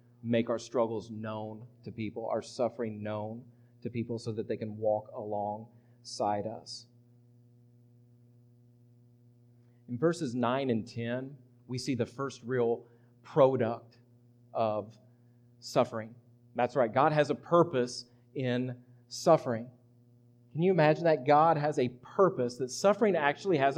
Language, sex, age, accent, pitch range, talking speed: English, male, 40-59, American, 120-165 Hz, 130 wpm